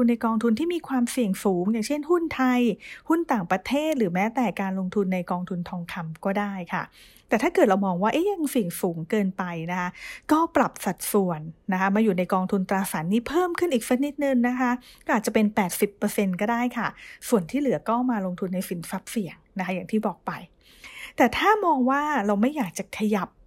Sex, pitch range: female, 190-250 Hz